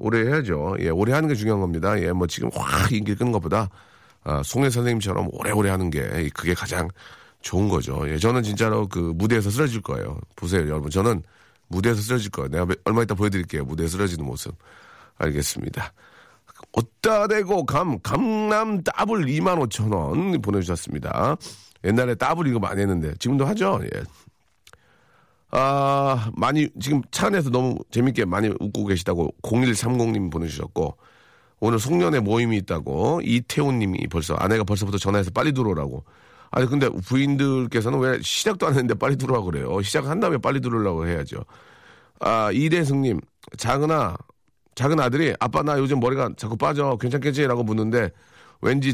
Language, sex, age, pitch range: Korean, male, 40-59, 95-135 Hz